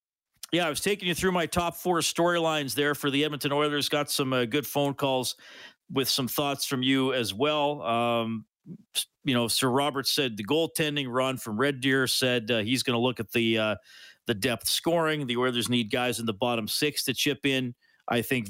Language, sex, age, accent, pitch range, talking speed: English, male, 50-69, American, 130-160 Hz, 210 wpm